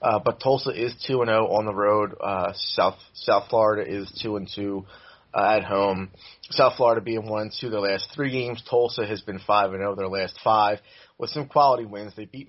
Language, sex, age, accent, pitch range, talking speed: English, male, 30-49, American, 105-130 Hz, 195 wpm